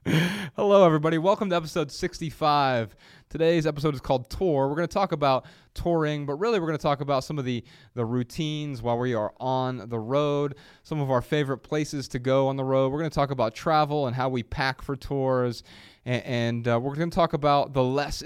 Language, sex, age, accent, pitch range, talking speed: English, male, 20-39, American, 110-145 Hz, 220 wpm